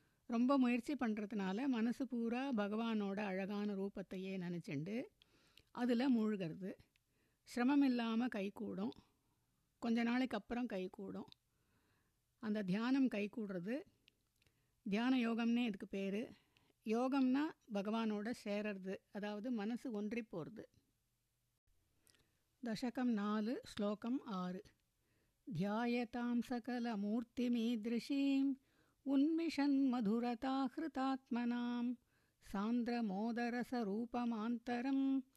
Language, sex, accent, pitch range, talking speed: Tamil, female, native, 210-255 Hz, 75 wpm